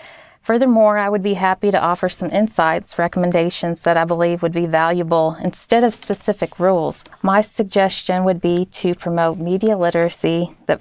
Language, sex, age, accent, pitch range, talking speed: English, female, 40-59, American, 170-195 Hz, 160 wpm